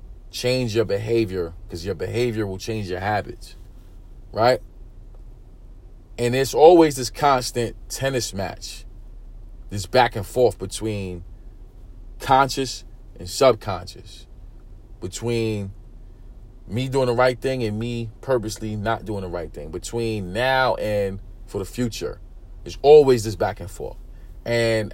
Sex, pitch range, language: male, 95-120 Hz, English